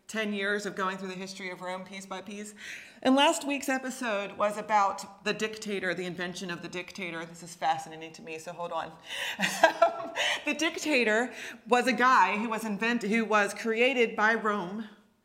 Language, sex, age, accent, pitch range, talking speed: English, female, 30-49, American, 185-225 Hz, 180 wpm